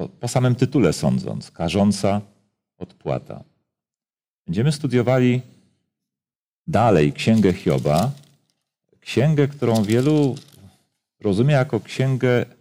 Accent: native